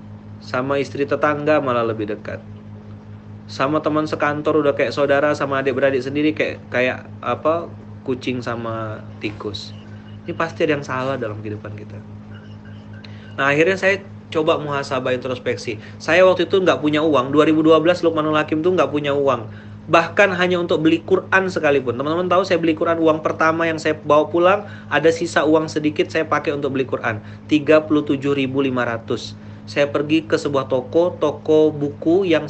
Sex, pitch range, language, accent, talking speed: male, 115-155 Hz, Indonesian, native, 155 wpm